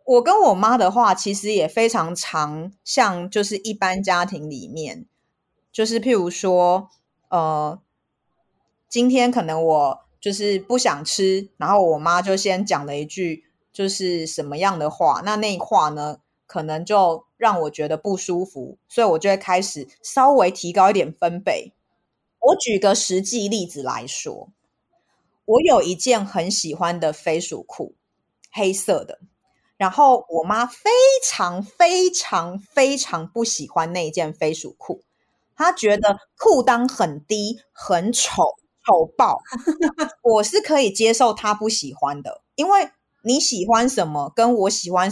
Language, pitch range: Chinese, 170-235 Hz